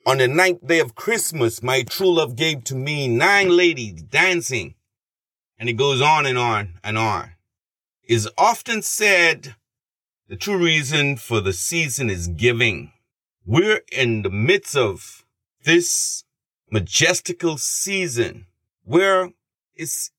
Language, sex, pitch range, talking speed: English, male, 115-170 Hz, 130 wpm